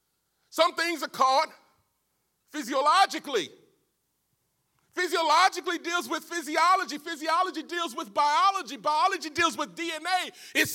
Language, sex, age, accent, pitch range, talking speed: English, male, 40-59, American, 250-345 Hz, 100 wpm